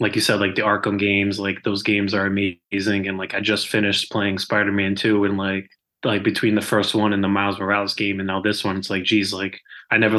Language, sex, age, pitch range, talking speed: English, male, 20-39, 100-110 Hz, 245 wpm